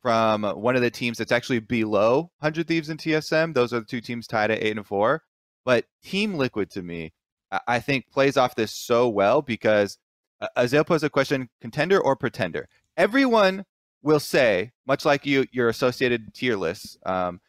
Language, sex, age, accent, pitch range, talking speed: English, male, 30-49, American, 105-140 Hz, 180 wpm